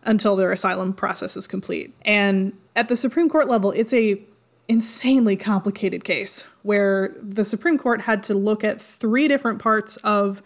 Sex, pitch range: female, 200-230 Hz